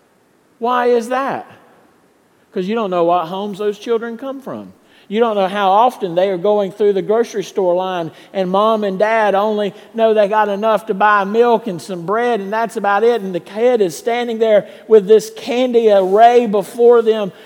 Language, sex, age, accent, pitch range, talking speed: English, male, 50-69, American, 160-230 Hz, 195 wpm